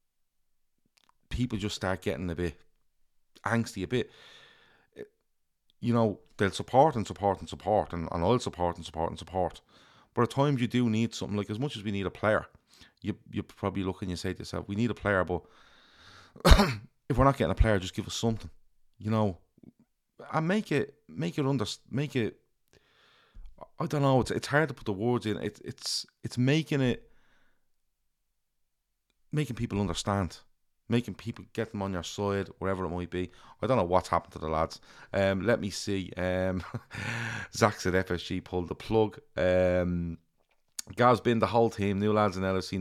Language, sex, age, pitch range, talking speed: English, male, 30-49, 90-115 Hz, 185 wpm